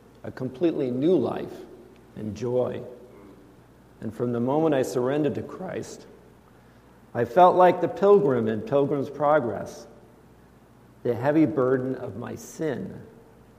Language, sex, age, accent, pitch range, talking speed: English, male, 50-69, American, 110-145 Hz, 125 wpm